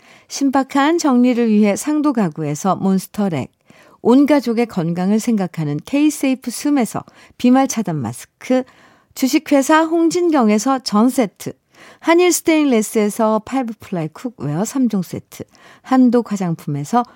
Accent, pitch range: native, 170-255 Hz